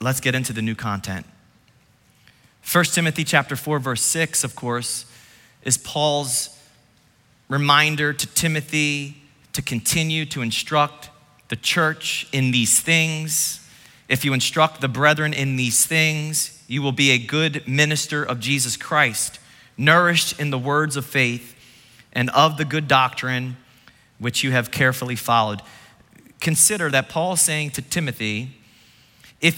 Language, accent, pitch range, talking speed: English, American, 130-165 Hz, 140 wpm